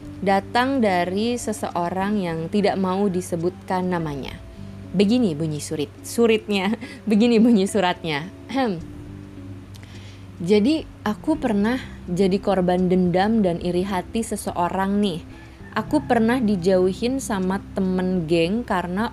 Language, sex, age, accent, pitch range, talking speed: Indonesian, female, 20-39, native, 170-225 Hz, 105 wpm